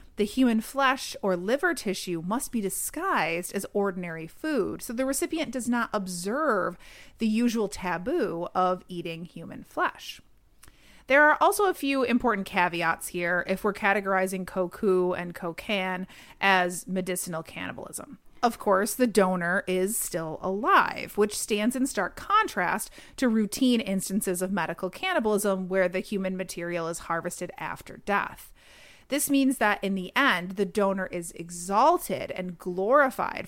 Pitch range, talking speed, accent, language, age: 185-240 Hz, 145 wpm, American, English, 30-49